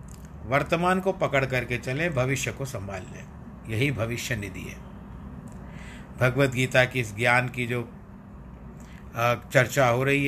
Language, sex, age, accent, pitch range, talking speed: Hindi, male, 50-69, native, 105-135 Hz, 135 wpm